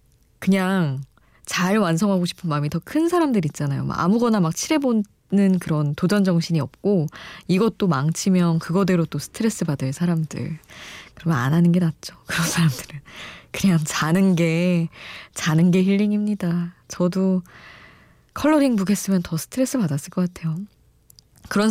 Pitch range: 160-205 Hz